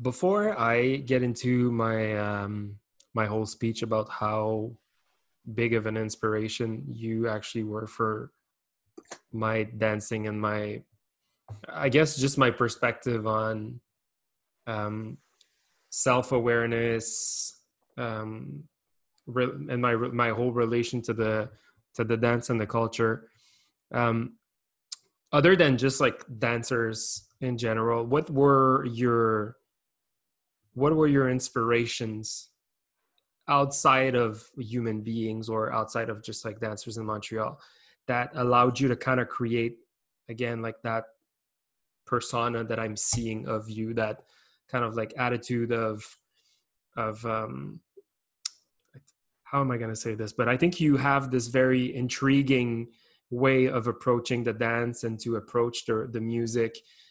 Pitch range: 110-125 Hz